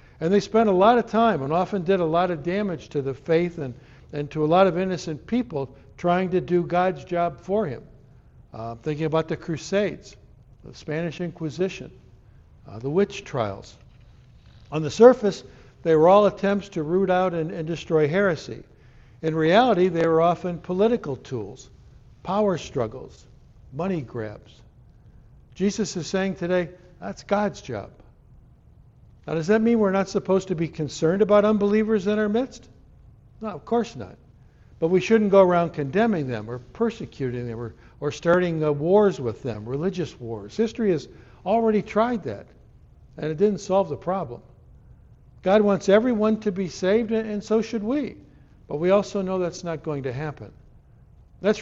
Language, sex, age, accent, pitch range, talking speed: English, male, 60-79, American, 145-200 Hz, 165 wpm